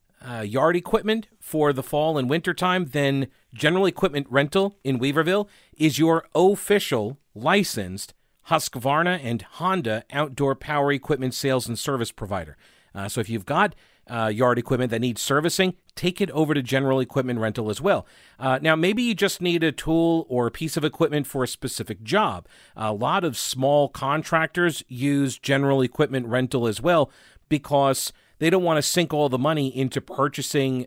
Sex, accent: male, American